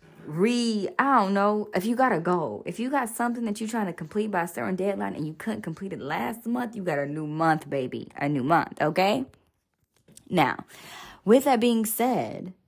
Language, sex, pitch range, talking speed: English, female, 155-210 Hz, 210 wpm